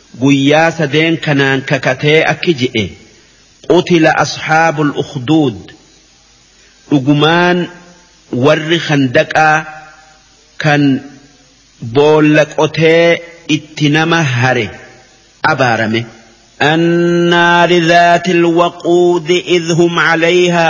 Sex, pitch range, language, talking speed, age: male, 145-170 Hz, Arabic, 65 wpm, 50-69